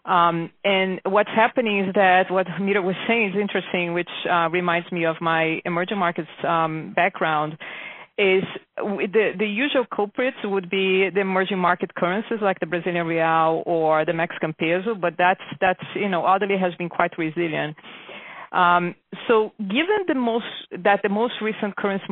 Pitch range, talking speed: 170-205 Hz, 165 wpm